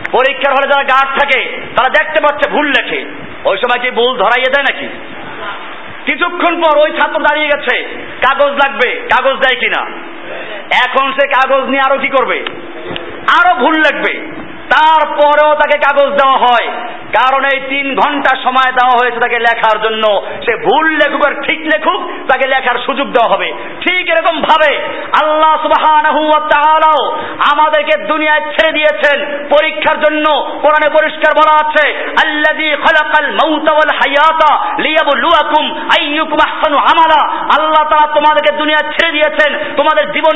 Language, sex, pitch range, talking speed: Bengali, male, 270-310 Hz, 60 wpm